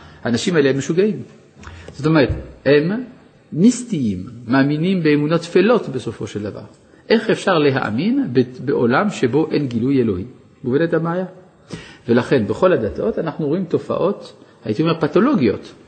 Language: Hebrew